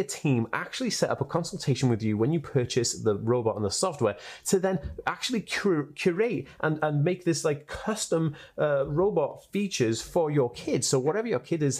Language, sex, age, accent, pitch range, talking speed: English, male, 30-49, British, 120-165 Hz, 195 wpm